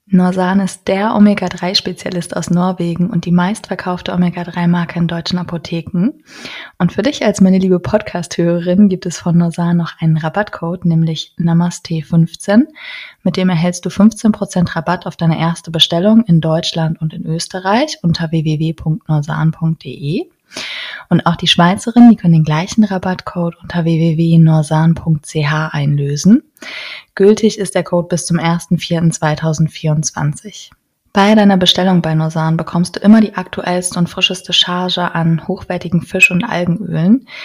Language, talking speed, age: German, 135 wpm, 20-39